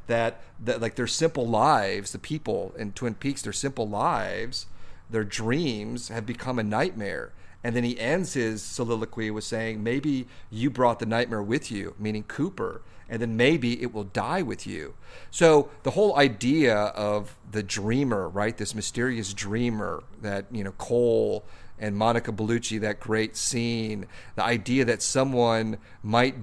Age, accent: 40-59, American